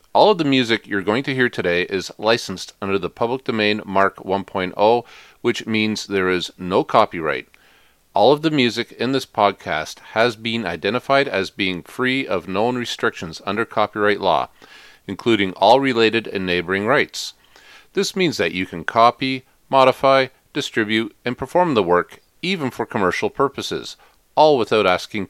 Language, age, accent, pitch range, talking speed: English, 40-59, American, 100-130 Hz, 160 wpm